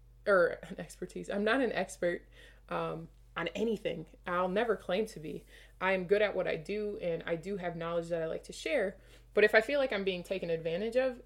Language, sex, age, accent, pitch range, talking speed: English, female, 20-39, American, 175-230 Hz, 220 wpm